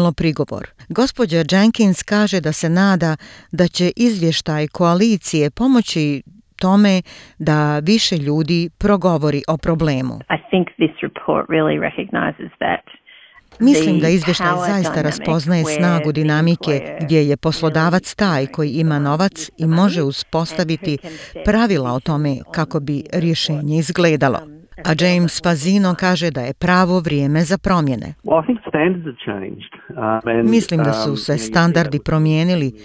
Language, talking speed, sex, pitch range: Croatian, 110 wpm, female, 150-180 Hz